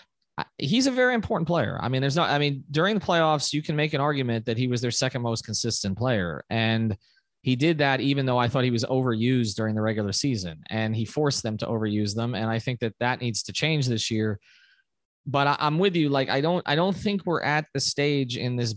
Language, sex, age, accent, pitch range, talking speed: English, male, 20-39, American, 115-150 Hz, 240 wpm